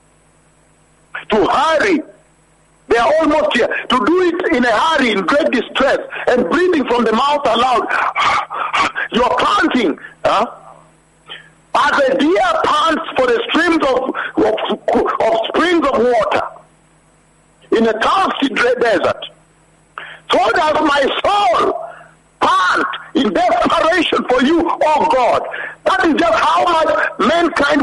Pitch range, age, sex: 260-340 Hz, 50-69, male